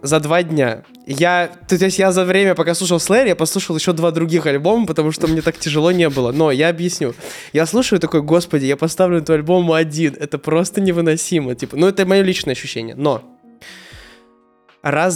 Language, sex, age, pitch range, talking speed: Russian, male, 20-39, 140-175 Hz, 190 wpm